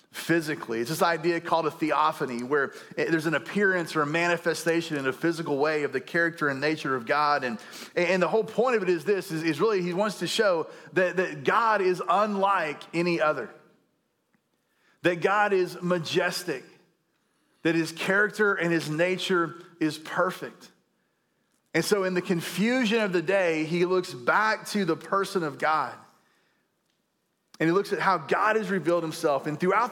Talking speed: 175 wpm